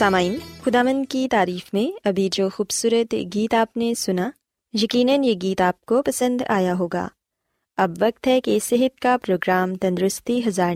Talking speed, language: 160 wpm, Urdu